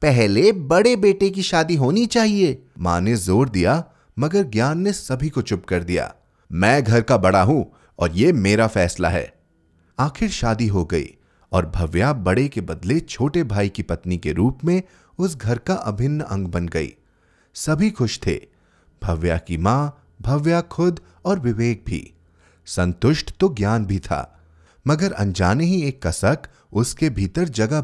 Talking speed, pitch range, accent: 165 wpm, 90-150 Hz, native